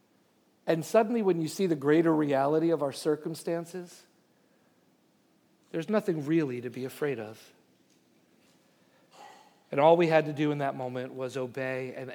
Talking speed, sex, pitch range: 150 wpm, male, 125-150 Hz